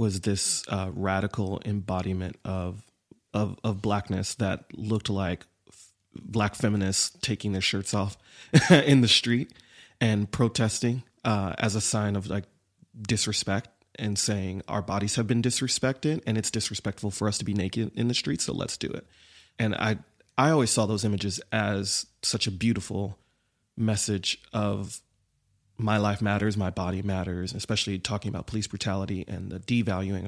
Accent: American